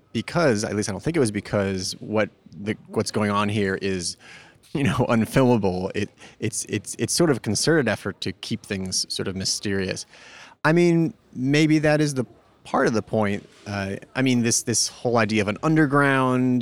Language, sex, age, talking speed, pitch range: English, male, 30-49, 195 wpm, 100-135 Hz